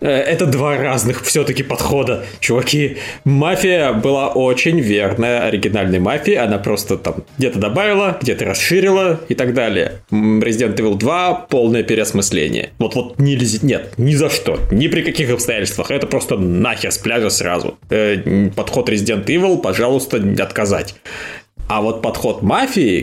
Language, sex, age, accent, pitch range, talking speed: Russian, male, 20-39, native, 105-140 Hz, 140 wpm